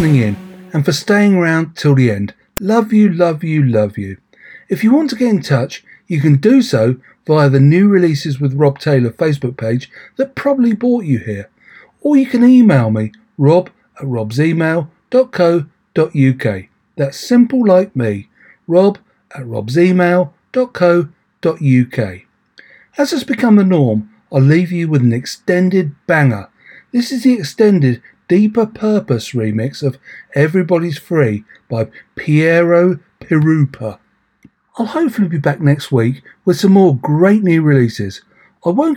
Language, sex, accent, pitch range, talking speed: English, male, British, 130-195 Hz, 145 wpm